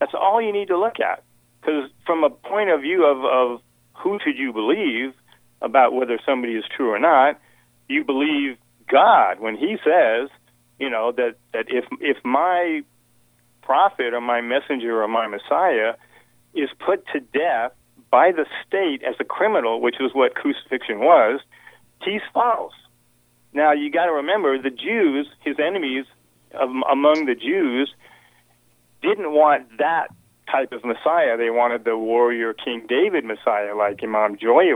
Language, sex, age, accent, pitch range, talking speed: English, male, 50-69, American, 115-150 Hz, 155 wpm